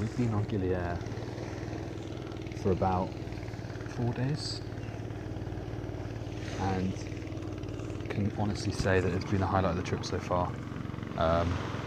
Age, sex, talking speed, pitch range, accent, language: 30-49, male, 115 wpm, 95-115 Hz, British, English